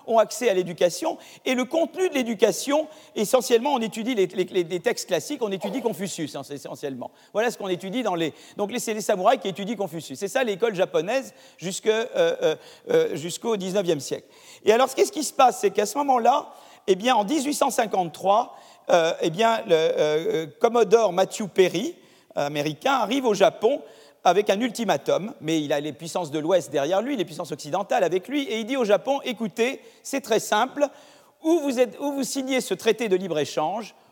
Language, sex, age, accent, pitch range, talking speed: French, male, 40-59, French, 175-255 Hz, 185 wpm